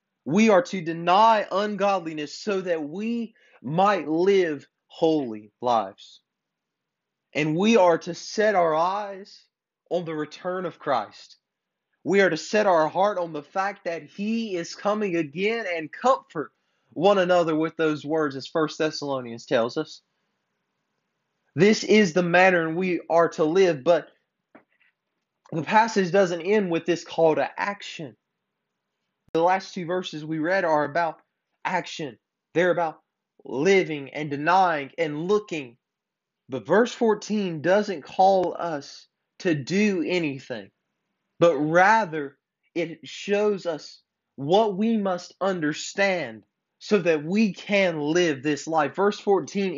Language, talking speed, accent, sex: English, 135 wpm, American, male